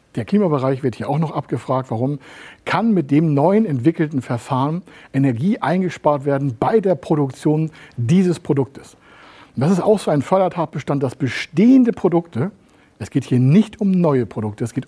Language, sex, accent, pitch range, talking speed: German, male, German, 120-165 Hz, 160 wpm